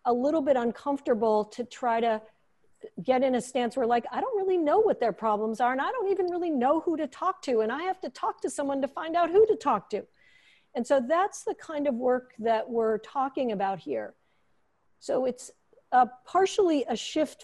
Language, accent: English, American